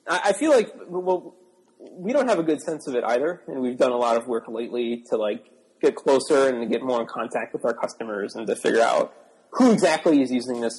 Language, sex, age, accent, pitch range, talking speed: English, male, 30-49, American, 115-180 Hz, 240 wpm